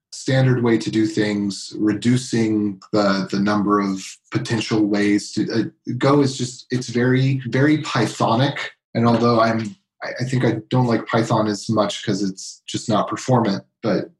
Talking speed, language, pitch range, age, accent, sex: 160 wpm, English, 105-130 Hz, 30-49, American, male